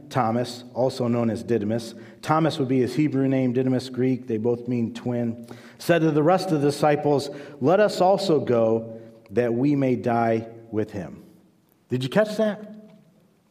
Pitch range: 115-155 Hz